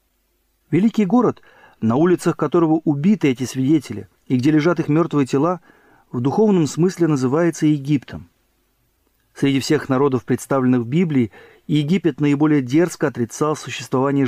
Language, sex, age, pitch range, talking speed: Russian, male, 40-59, 125-160 Hz, 125 wpm